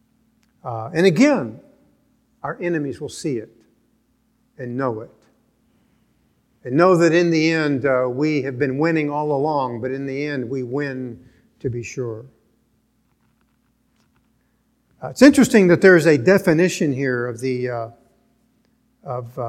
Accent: American